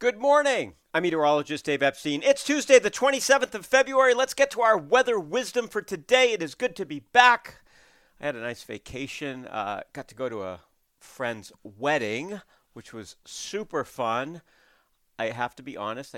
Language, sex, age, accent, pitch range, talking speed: English, male, 50-69, American, 105-155 Hz, 180 wpm